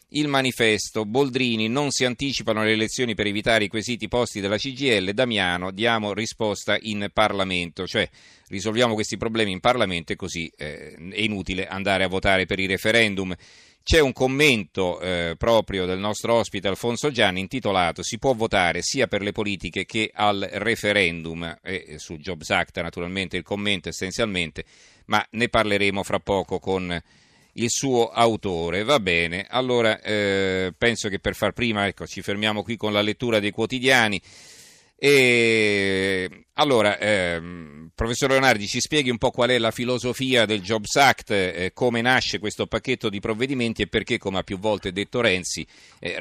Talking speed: 160 wpm